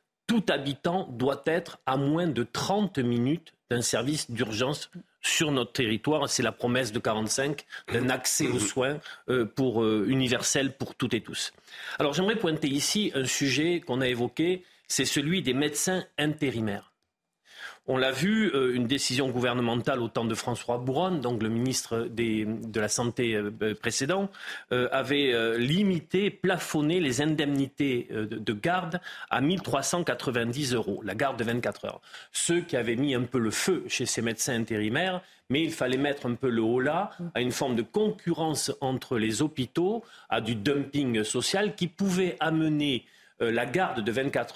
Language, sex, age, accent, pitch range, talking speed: French, male, 40-59, French, 120-160 Hz, 160 wpm